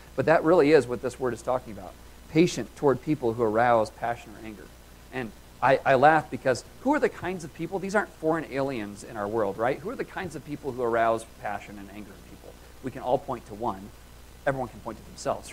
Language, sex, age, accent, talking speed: English, male, 40-59, American, 235 wpm